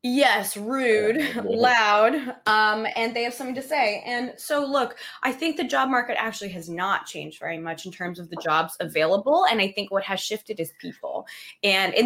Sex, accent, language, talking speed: female, American, English, 200 wpm